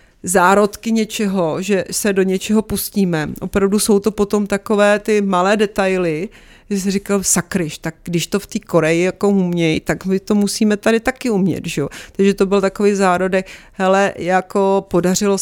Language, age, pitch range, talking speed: Czech, 40-59, 170-190 Hz, 160 wpm